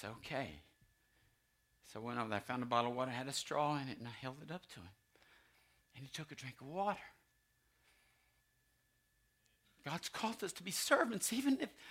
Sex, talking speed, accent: male, 195 wpm, American